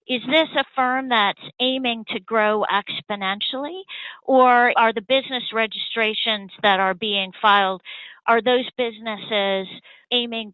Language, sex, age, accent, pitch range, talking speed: English, female, 40-59, American, 195-245 Hz, 125 wpm